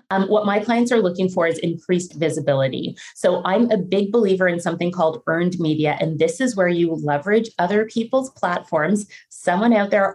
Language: English